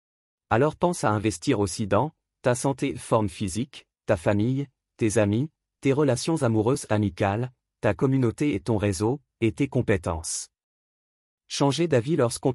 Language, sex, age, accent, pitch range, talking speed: French, male, 40-59, French, 105-140 Hz, 140 wpm